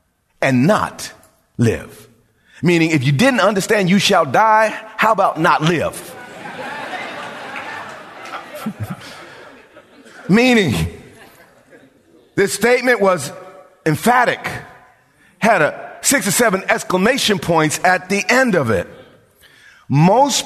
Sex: male